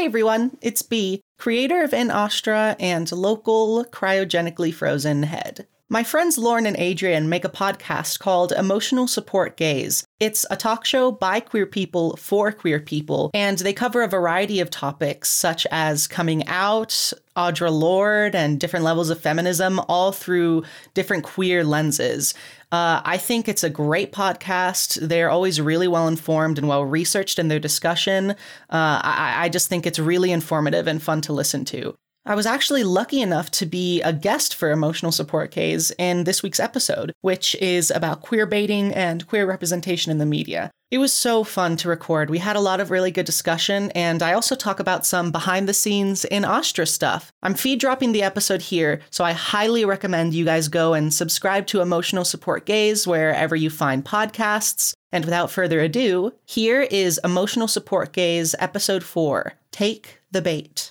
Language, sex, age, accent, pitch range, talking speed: English, female, 30-49, American, 165-210 Hz, 170 wpm